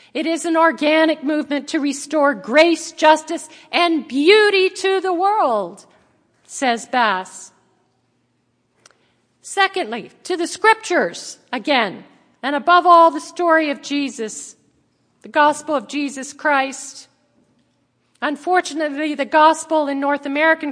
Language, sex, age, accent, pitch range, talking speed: English, female, 50-69, American, 275-330 Hz, 115 wpm